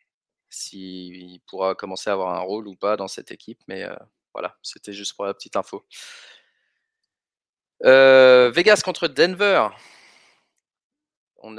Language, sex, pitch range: French, male, 105-130 Hz